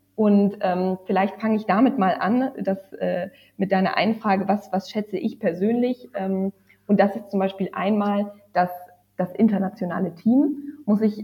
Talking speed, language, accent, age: 165 wpm, German, German, 20-39